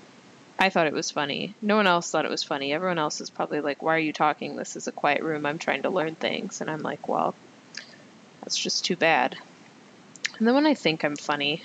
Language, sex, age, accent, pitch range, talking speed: English, female, 10-29, American, 155-210 Hz, 235 wpm